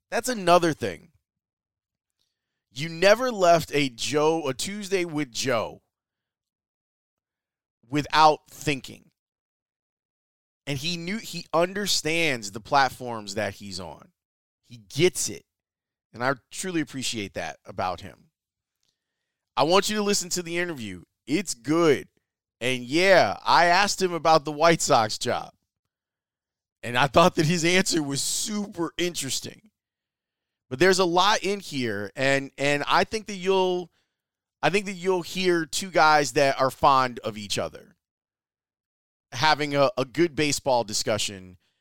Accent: American